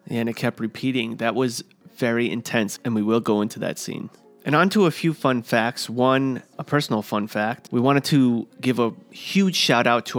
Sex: male